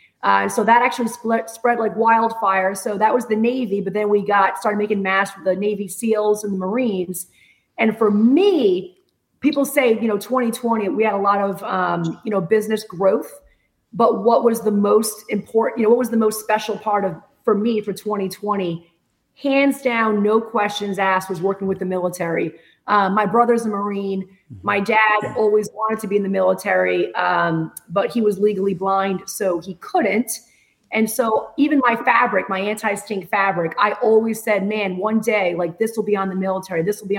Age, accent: 30-49, American